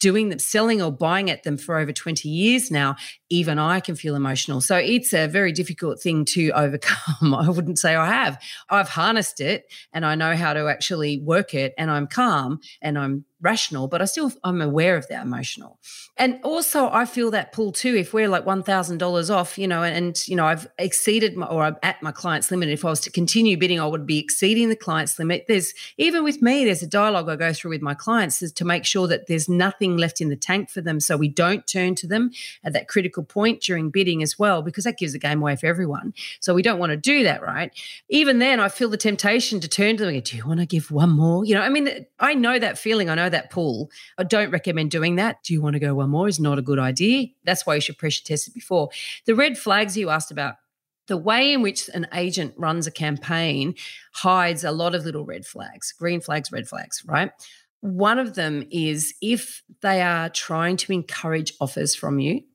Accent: Australian